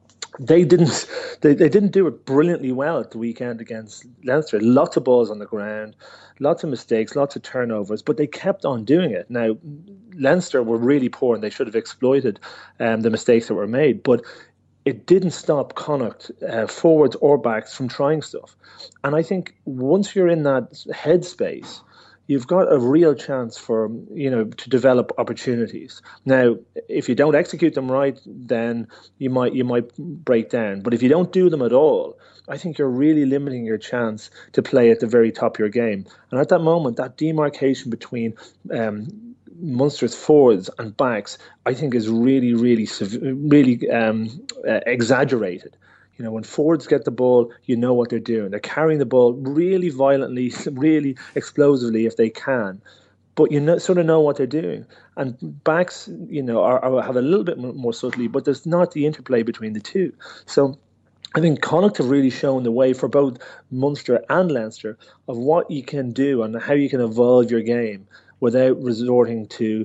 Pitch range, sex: 115-150 Hz, male